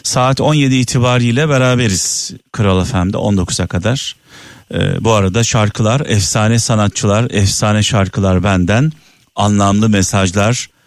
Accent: native